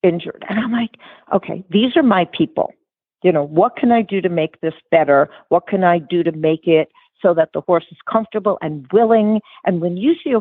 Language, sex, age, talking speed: English, female, 50-69, 225 wpm